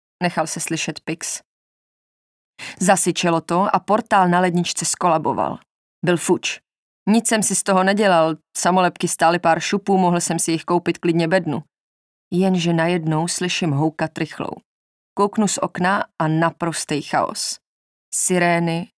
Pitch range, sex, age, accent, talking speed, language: 165-190 Hz, female, 30-49, native, 135 wpm, Czech